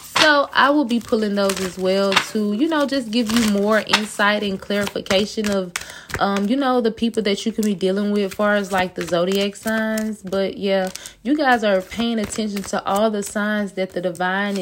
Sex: female